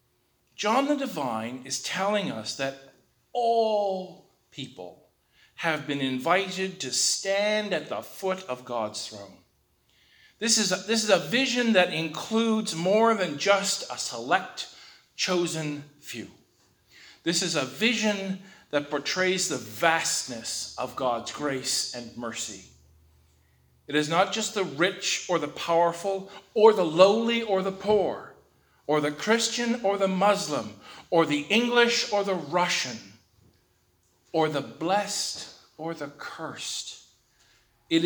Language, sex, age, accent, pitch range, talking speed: English, male, 50-69, American, 130-195 Hz, 130 wpm